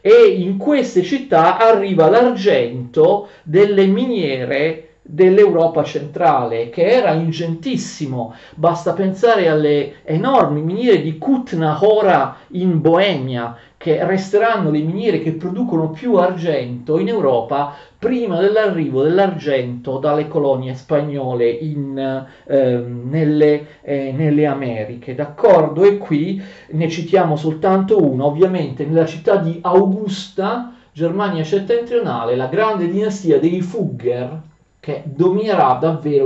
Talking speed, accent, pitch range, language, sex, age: 110 wpm, native, 145-195 Hz, Italian, male, 40-59